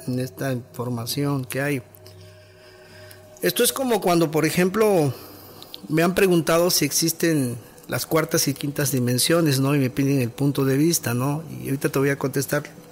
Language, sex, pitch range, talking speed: Spanish, male, 125-165 Hz, 165 wpm